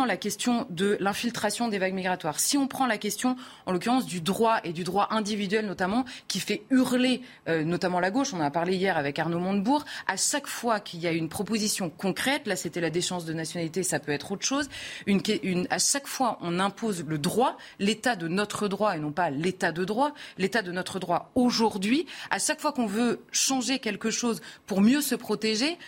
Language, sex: French, female